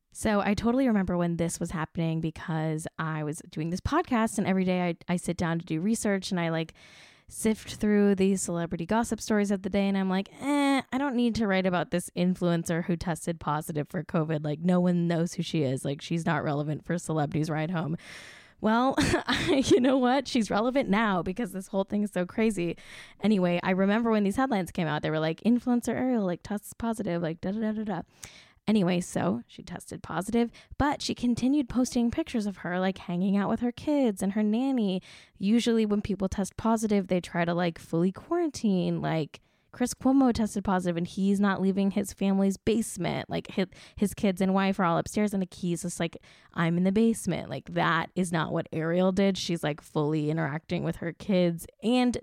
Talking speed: 210 wpm